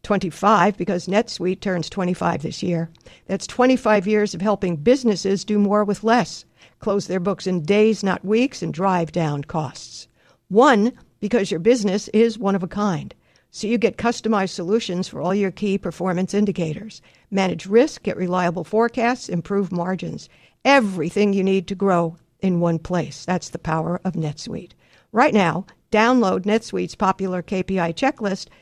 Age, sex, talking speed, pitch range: 60-79, female, 155 wpm, 175-215 Hz